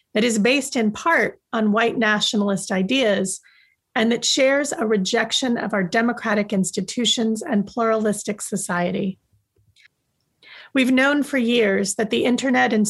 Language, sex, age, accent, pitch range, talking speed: English, female, 40-59, American, 205-240 Hz, 135 wpm